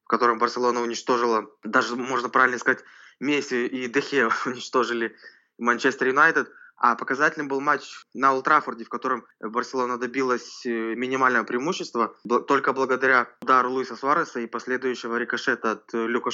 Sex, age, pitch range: male, 20-39, 120-140 Hz